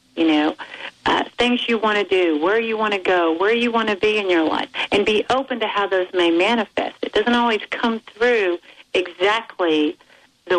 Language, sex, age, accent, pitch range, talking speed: English, female, 50-69, American, 180-250 Hz, 205 wpm